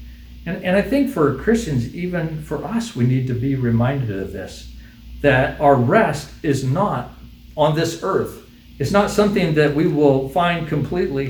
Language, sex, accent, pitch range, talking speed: English, male, American, 115-190 Hz, 170 wpm